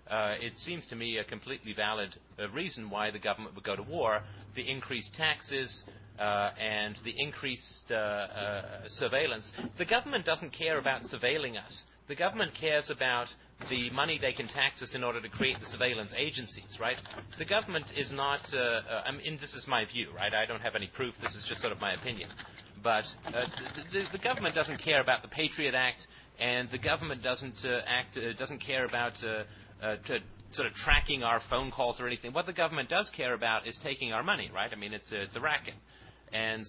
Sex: male